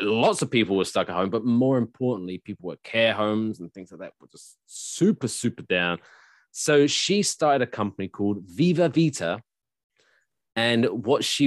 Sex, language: male, English